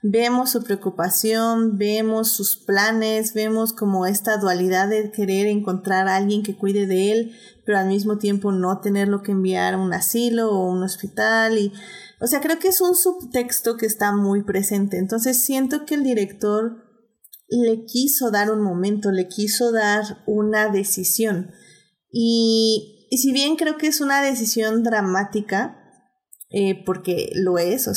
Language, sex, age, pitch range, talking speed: Spanish, female, 30-49, 185-225 Hz, 160 wpm